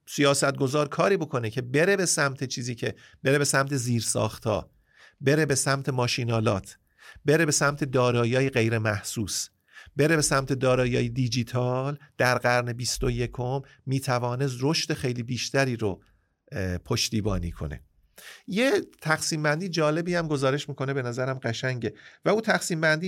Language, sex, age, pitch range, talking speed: Persian, male, 50-69, 125-165 Hz, 140 wpm